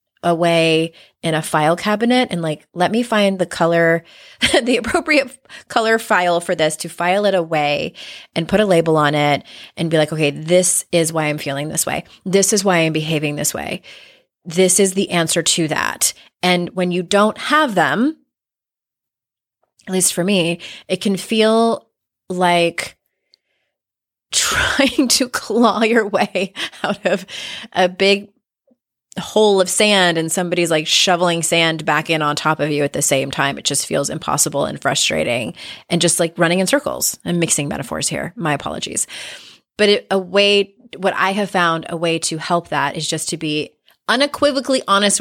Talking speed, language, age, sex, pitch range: 170 wpm, English, 30-49, female, 160-205 Hz